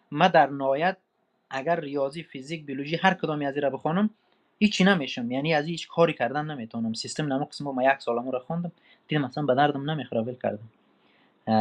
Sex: male